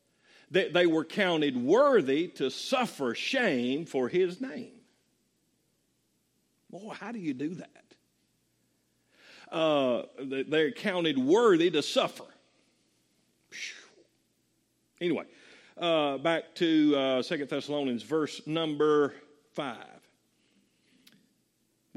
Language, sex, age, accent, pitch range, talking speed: English, male, 50-69, American, 150-215 Hz, 85 wpm